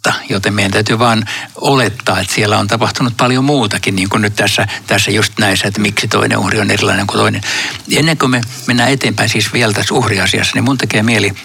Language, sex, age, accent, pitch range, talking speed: Finnish, male, 60-79, native, 100-120 Hz, 205 wpm